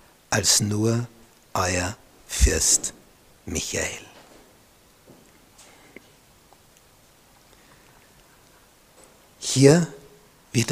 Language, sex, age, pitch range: German, male, 60-79, 115-140 Hz